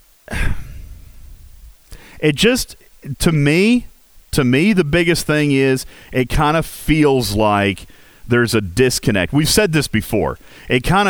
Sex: male